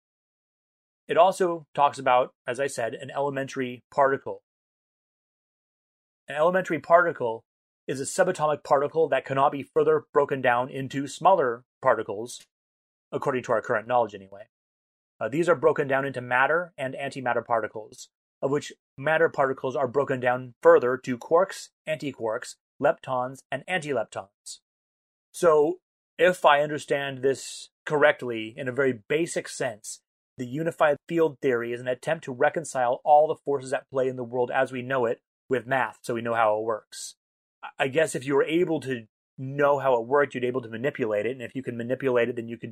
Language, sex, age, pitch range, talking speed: English, male, 30-49, 120-150 Hz, 170 wpm